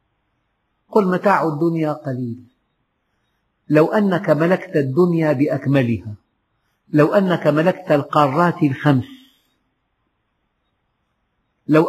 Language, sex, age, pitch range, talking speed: Arabic, male, 50-69, 130-180 Hz, 75 wpm